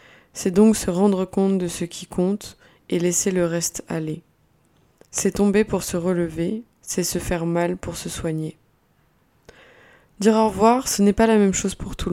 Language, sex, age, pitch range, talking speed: French, female, 20-39, 175-200 Hz, 185 wpm